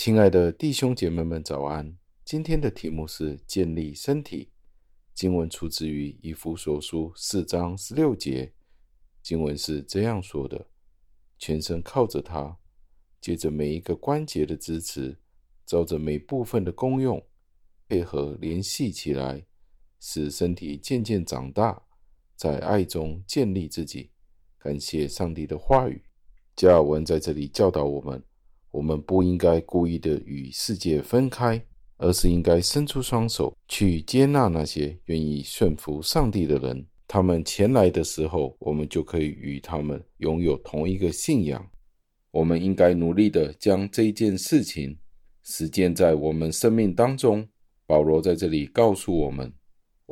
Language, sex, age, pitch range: Chinese, male, 50-69, 75-95 Hz